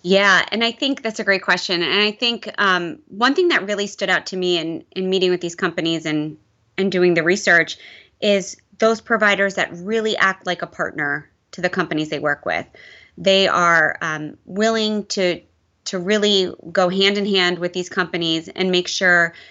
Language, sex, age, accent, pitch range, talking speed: English, female, 20-39, American, 170-200 Hz, 195 wpm